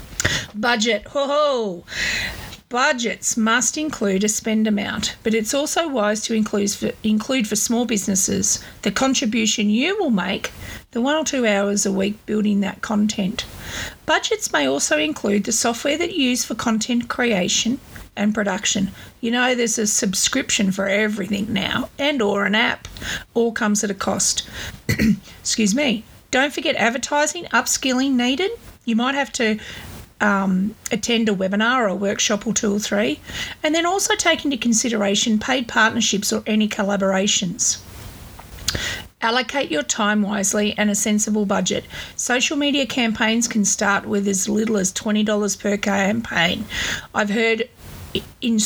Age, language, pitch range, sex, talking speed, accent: 40-59, English, 210-255 Hz, female, 145 wpm, Australian